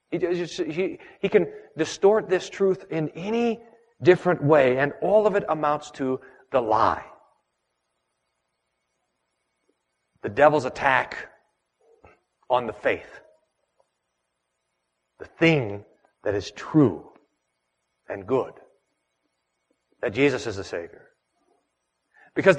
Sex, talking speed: male, 100 wpm